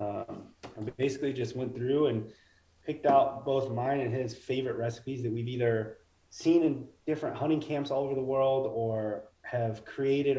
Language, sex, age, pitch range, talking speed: English, male, 20-39, 110-130 Hz, 175 wpm